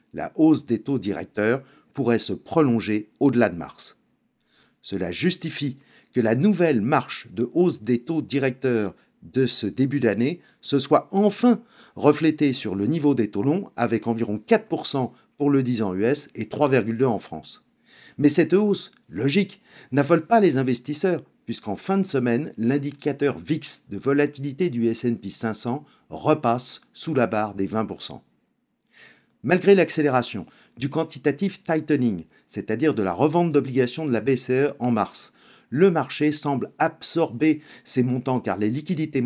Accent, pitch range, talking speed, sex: French, 115-155 Hz, 150 wpm, male